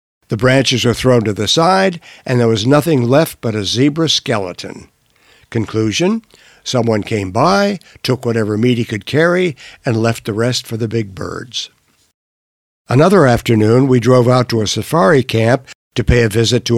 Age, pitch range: 60-79, 115-145 Hz